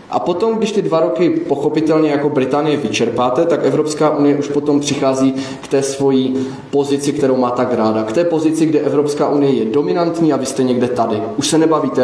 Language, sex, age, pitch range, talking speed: Czech, male, 20-39, 125-155 Hz, 200 wpm